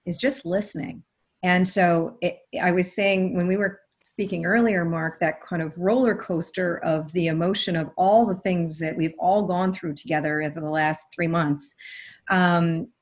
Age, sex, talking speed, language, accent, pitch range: 40-59, female, 180 wpm, English, American, 175-215 Hz